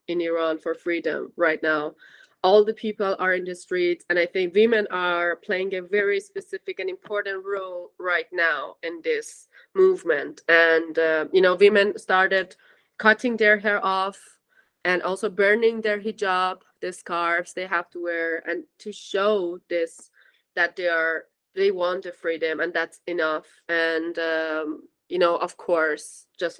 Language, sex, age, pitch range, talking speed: Slovak, female, 20-39, 170-215 Hz, 160 wpm